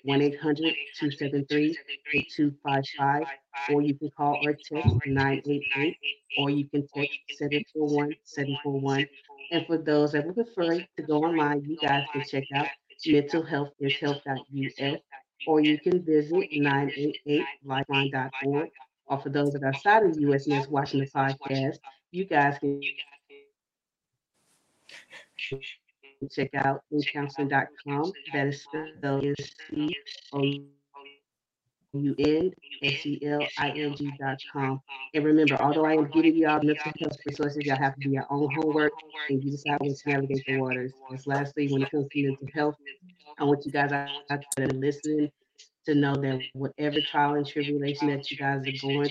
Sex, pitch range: female, 135-150 Hz